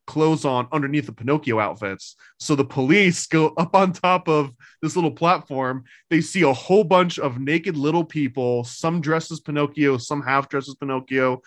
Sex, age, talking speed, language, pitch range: male, 20-39, 185 wpm, English, 135-165 Hz